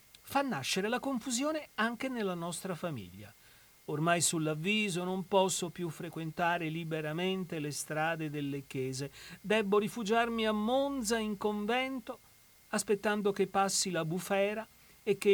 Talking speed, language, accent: 125 wpm, Italian, native